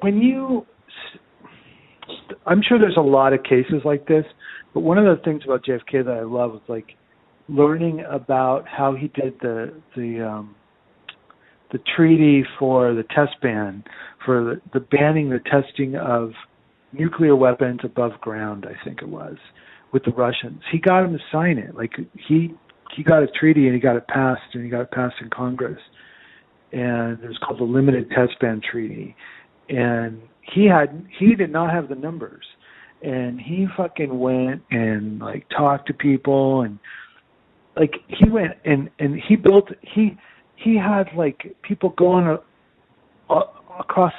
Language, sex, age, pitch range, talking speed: English, male, 50-69, 125-175 Hz, 165 wpm